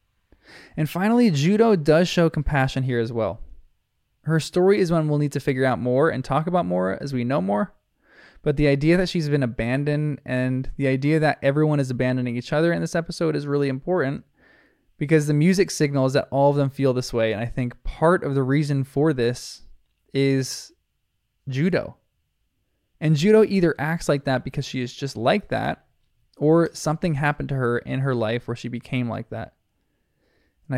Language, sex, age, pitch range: English, male, 20-39, 125-160 Hz